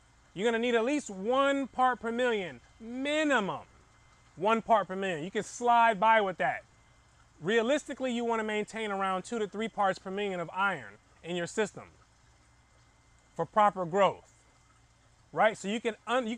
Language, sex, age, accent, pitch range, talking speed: English, male, 30-49, American, 170-225 Hz, 170 wpm